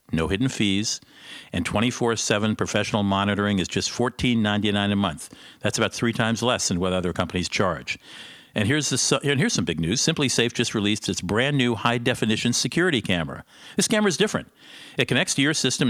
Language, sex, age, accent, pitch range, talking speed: English, male, 50-69, American, 100-130 Hz, 180 wpm